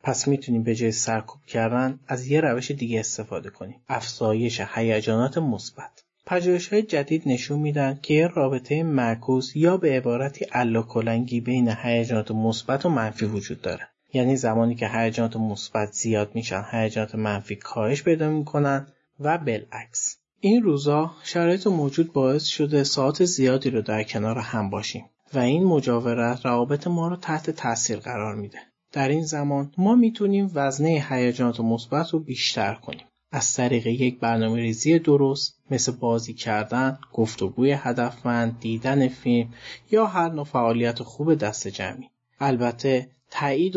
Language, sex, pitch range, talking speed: Persian, male, 115-140 Hz, 145 wpm